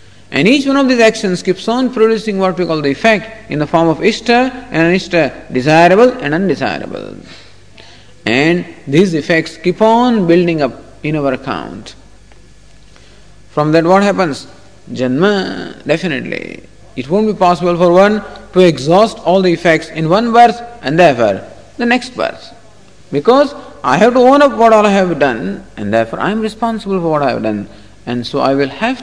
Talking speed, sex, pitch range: 180 wpm, male, 140-220 Hz